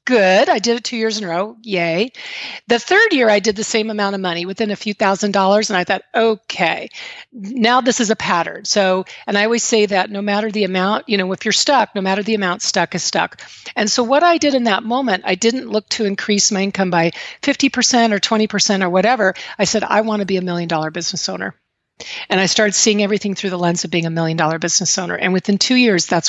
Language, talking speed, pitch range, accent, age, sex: English, 245 wpm, 185-230 Hz, American, 40-59, female